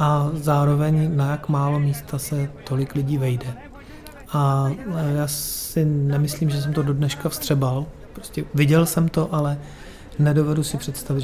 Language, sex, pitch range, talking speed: Czech, male, 140-155 Hz, 150 wpm